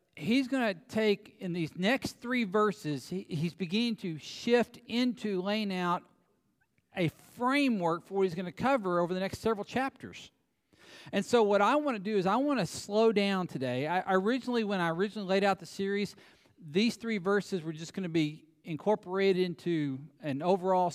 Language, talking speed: English, 185 wpm